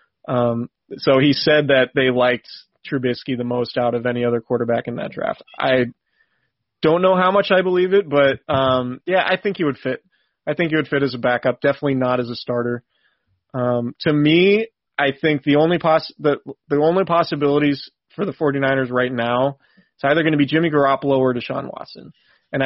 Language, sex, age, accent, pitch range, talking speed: English, male, 30-49, American, 125-150 Hz, 200 wpm